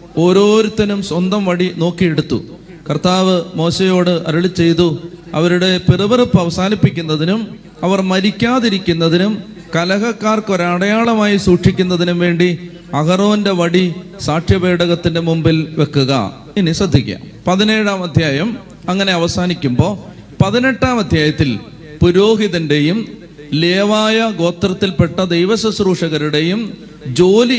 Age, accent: 30-49, native